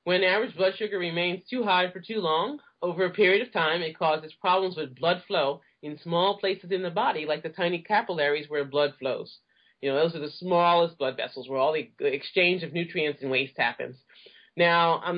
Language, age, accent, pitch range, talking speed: English, 30-49, American, 155-200 Hz, 210 wpm